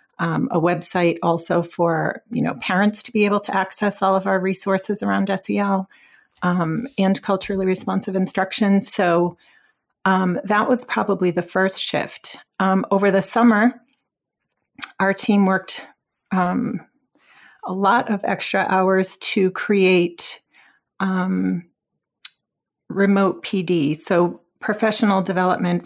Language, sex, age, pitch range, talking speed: English, female, 40-59, 180-205 Hz, 125 wpm